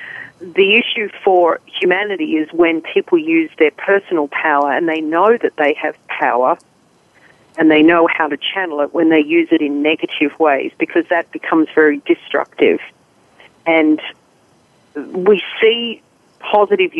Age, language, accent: 40-59, English, Australian